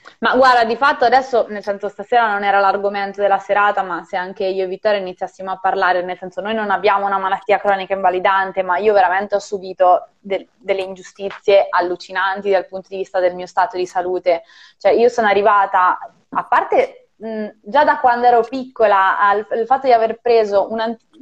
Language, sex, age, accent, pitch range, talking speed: Italian, female, 20-39, native, 185-225 Hz, 185 wpm